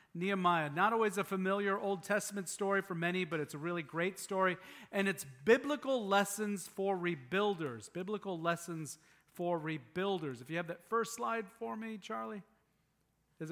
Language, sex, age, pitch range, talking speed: English, male, 40-59, 170-210 Hz, 160 wpm